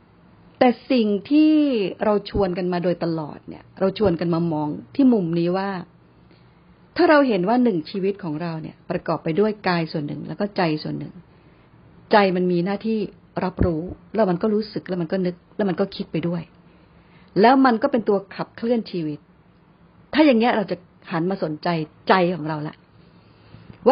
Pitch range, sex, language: 175-230 Hz, female, Thai